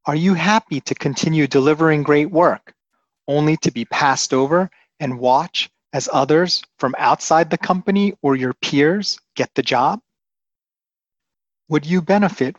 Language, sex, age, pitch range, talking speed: English, male, 30-49, 135-165 Hz, 145 wpm